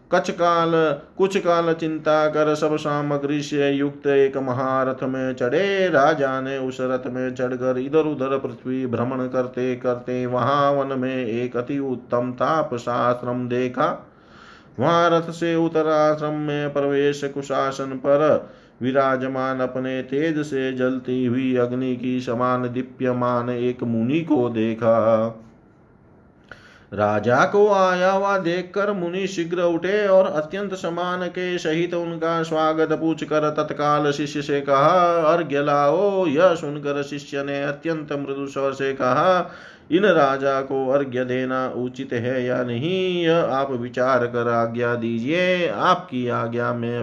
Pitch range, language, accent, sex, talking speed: 125-165 Hz, Hindi, native, male, 125 wpm